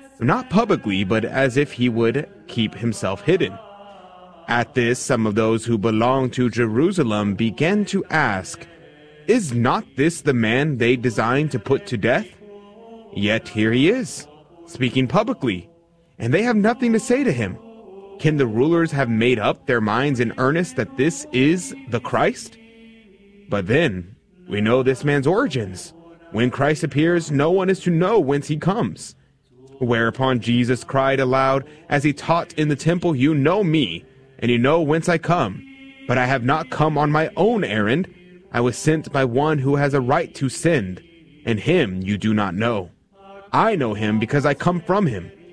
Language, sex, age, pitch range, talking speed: English, male, 30-49, 120-170 Hz, 175 wpm